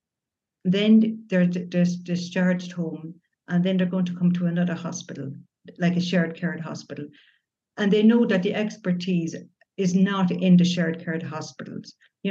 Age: 60-79